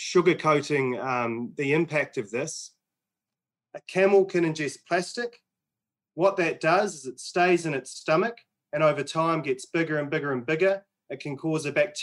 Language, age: Arabic, 30-49